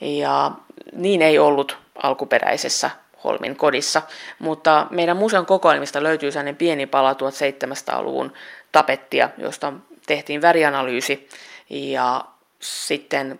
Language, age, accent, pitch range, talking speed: Finnish, 30-49, native, 135-165 Hz, 100 wpm